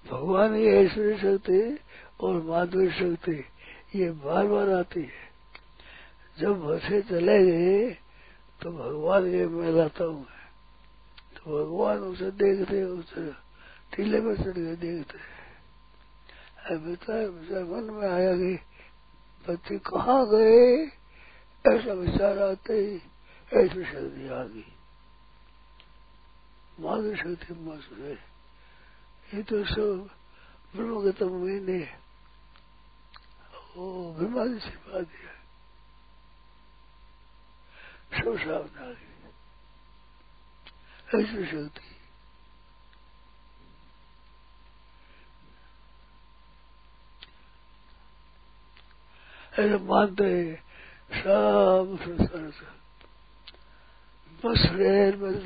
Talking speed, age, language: 60 wpm, 60-79, Hindi